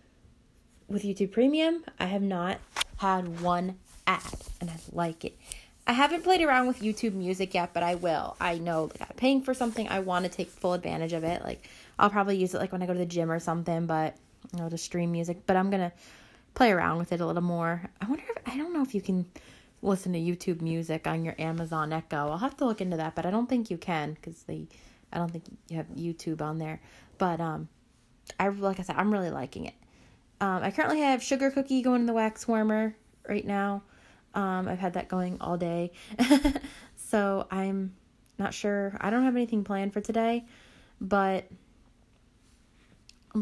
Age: 20-39